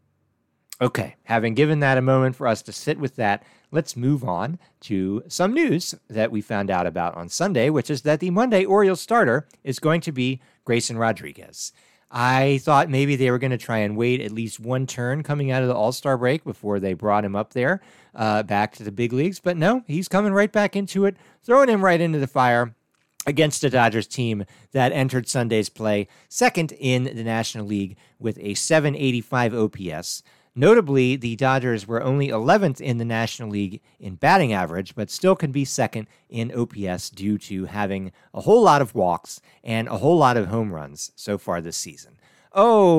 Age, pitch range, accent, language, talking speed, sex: 40-59, 105-150 Hz, American, English, 195 wpm, male